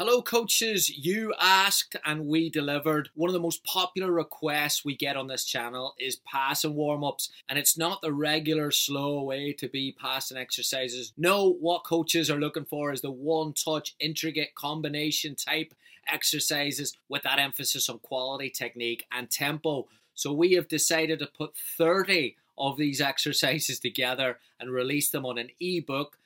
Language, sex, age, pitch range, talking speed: English, male, 20-39, 130-155 Hz, 165 wpm